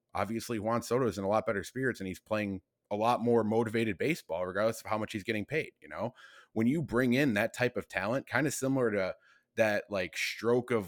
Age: 20-39